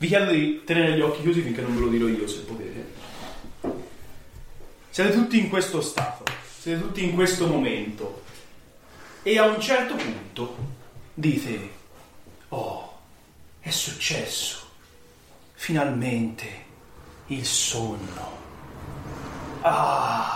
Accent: native